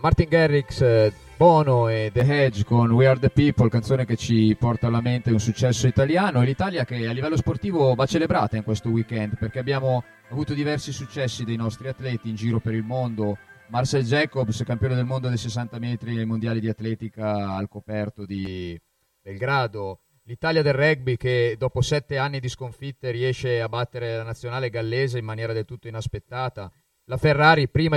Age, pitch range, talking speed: 30-49, 110-130 Hz, 180 wpm